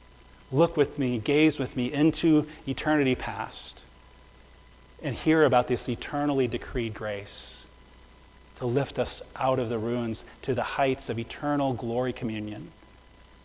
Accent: American